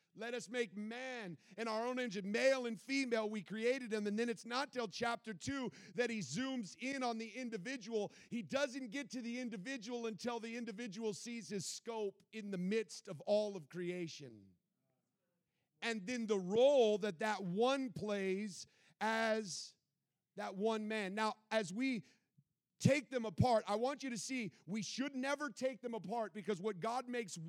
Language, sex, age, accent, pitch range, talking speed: English, male, 40-59, American, 200-250 Hz, 175 wpm